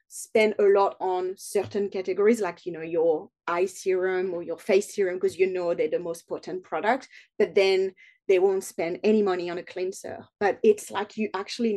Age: 30-49